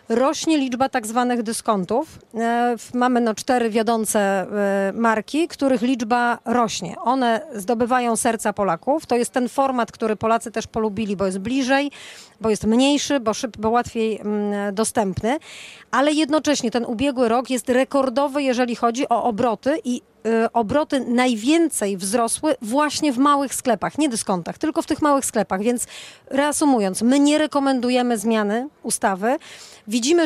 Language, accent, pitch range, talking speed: Polish, native, 225-270 Hz, 140 wpm